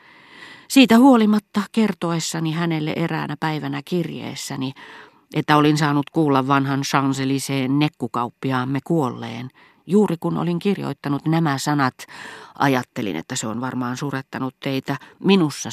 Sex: female